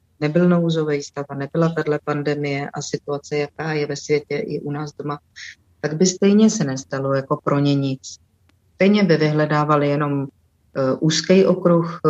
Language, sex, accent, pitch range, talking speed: Czech, female, native, 145-175 Hz, 160 wpm